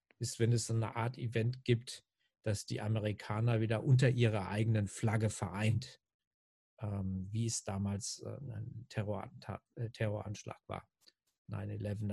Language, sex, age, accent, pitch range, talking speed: German, male, 50-69, German, 110-125 Hz, 115 wpm